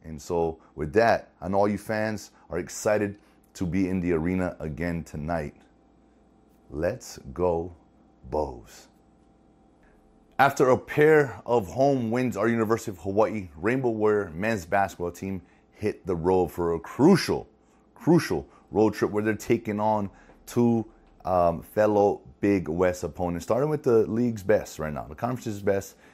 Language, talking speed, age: English, 150 wpm, 30-49